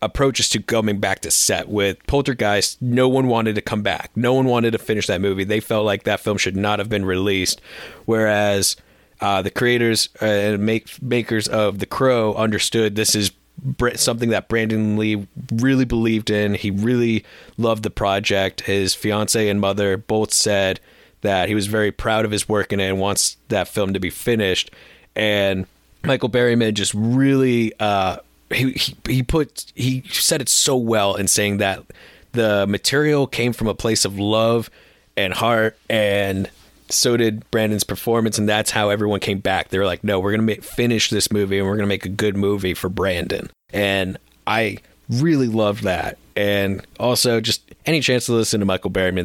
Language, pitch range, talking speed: English, 100-115 Hz, 185 wpm